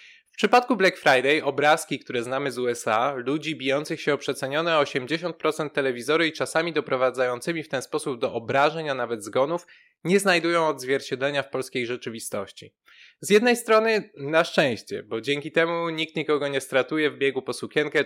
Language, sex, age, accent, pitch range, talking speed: Polish, male, 20-39, native, 130-165 Hz, 160 wpm